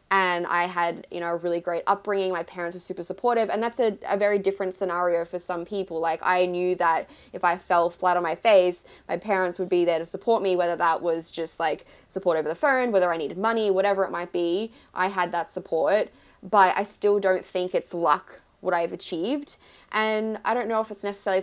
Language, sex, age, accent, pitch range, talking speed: English, female, 20-39, Australian, 175-200 Hz, 225 wpm